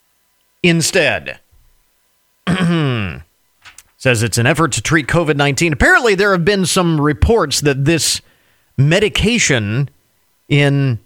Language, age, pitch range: English, 40-59, 125-170 Hz